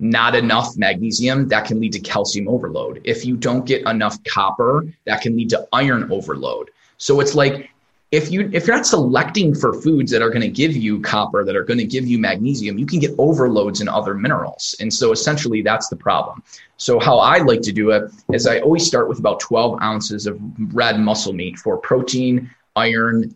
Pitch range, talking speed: 110-140 Hz, 210 wpm